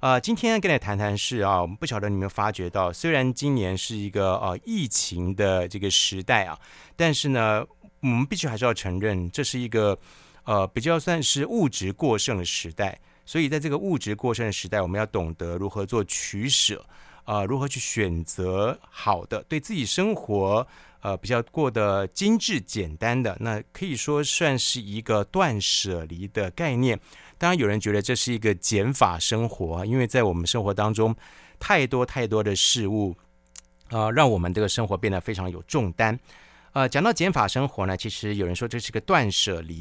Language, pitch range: Chinese, 100-135 Hz